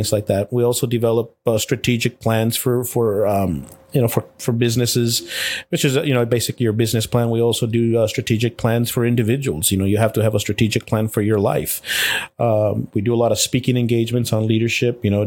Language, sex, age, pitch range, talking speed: English, male, 30-49, 105-120 Hz, 220 wpm